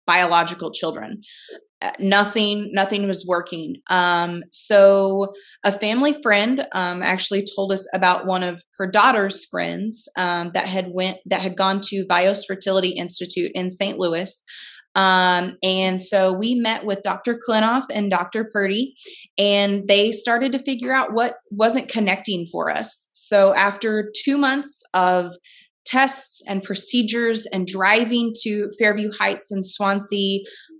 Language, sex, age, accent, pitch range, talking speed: English, female, 20-39, American, 190-230 Hz, 140 wpm